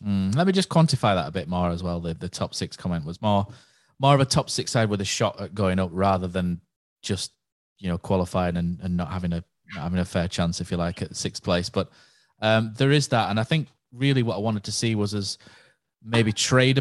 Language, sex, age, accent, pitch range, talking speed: English, male, 20-39, British, 95-120 Hz, 250 wpm